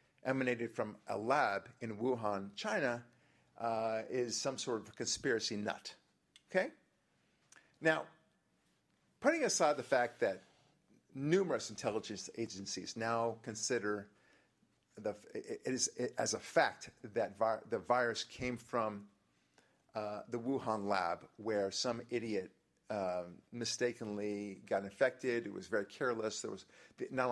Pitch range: 105-130 Hz